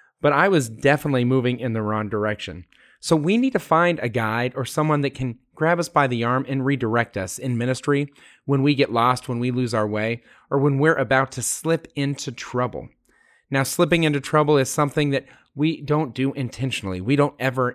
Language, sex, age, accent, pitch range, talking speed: English, male, 30-49, American, 115-145 Hz, 205 wpm